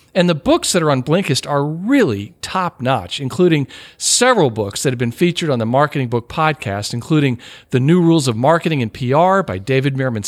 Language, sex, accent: English, male, American